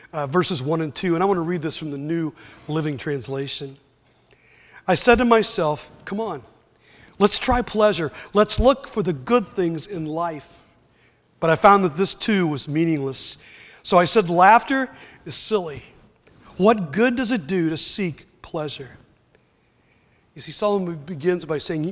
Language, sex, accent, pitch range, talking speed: English, male, American, 165-220 Hz, 165 wpm